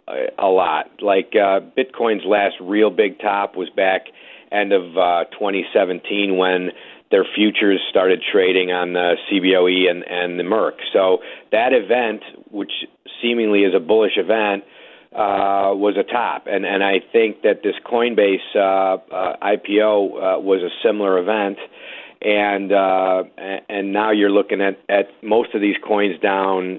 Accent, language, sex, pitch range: American, English, male, 95-110 Hz